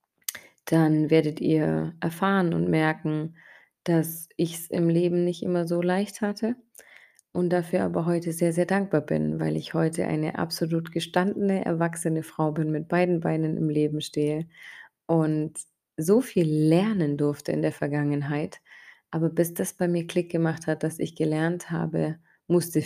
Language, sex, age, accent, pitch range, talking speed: German, female, 20-39, German, 150-170 Hz, 160 wpm